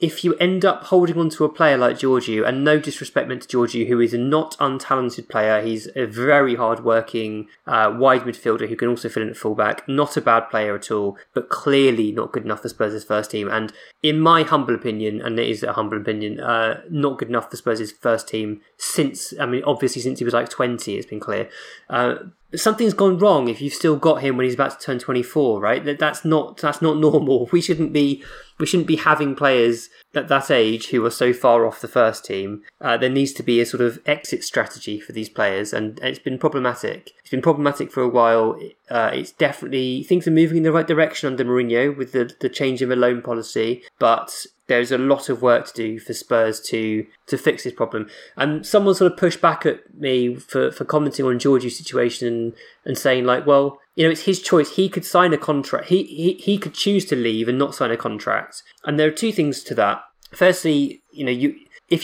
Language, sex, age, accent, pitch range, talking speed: English, male, 20-39, British, 115-155 Hz, 230 wpm